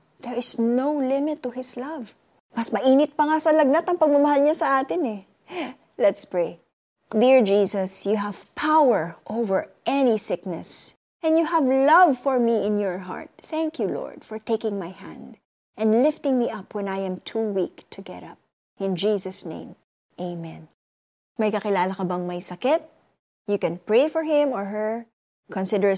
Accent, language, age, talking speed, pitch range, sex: native, Filipino, 20-39, 165 wpm, 190-270 Hz, female